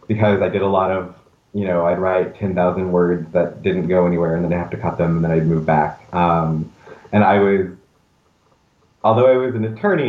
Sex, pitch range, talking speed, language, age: male, 85-100 Hz, 220 wpm, English, 30-49